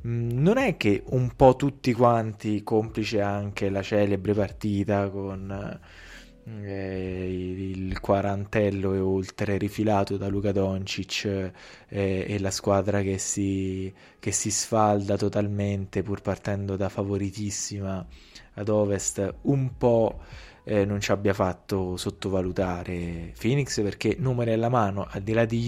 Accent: native